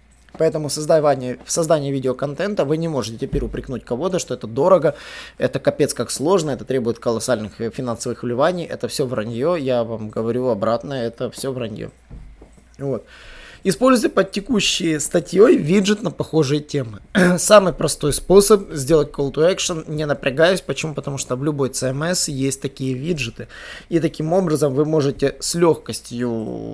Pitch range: 125-170 Hz